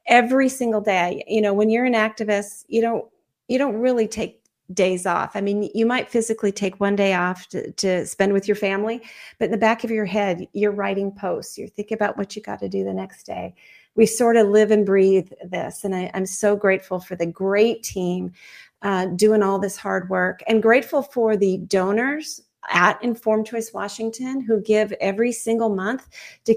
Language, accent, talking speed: English, American, 205 wpm